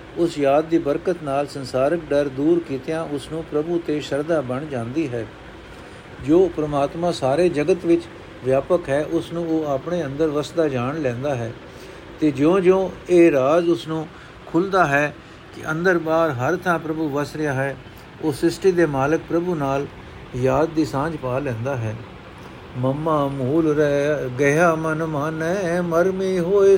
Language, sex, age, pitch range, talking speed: Punjabi, male, 60-79, 140-170 Hz, 155 wpm